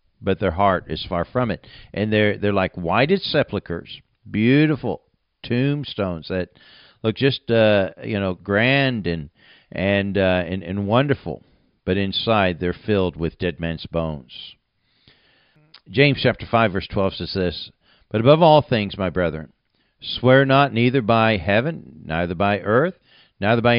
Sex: male